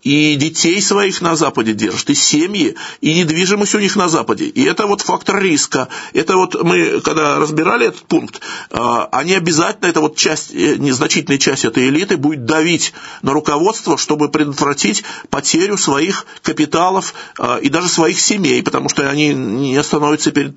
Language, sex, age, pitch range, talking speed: Russian, male, 50-69, 145-175 Hz, 160 wpm